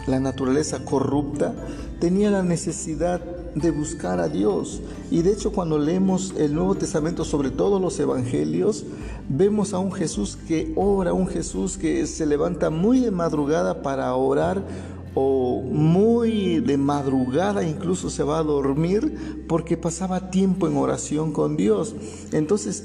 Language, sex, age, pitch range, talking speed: Spanish, male, 50-69, 145-185 Hz, 145 wpm